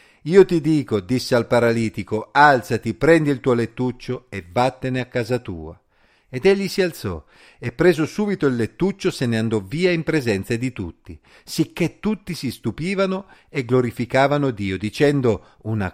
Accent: native